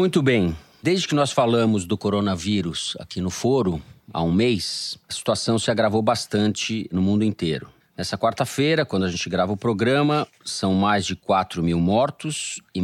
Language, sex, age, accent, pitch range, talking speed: Portuguese, male, 40-59, Brazilian, 95-125 Hz, 175 wpm